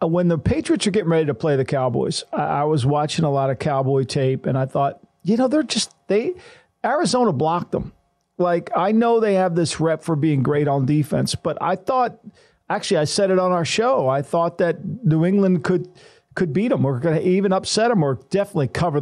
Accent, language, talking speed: American, English, 215 wpm